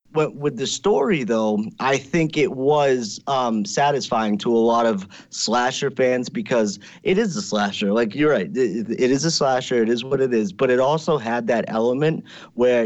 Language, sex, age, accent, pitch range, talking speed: English, male, 30-49, American, 105-135 Hz, 190 wpm